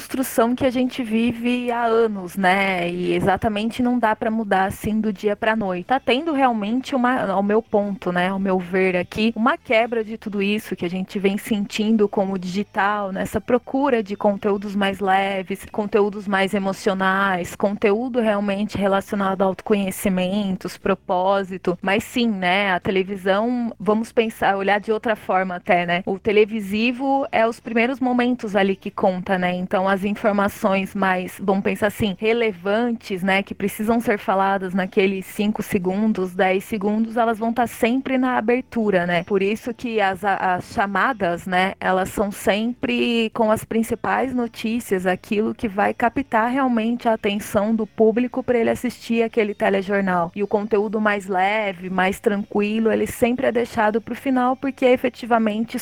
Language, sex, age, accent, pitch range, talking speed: Portuguese, female, 20-39, Brazilian, 195-230 Hz, 165 wpm